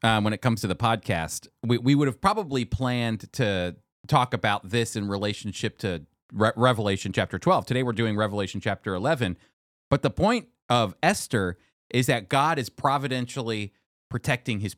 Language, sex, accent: English, male, American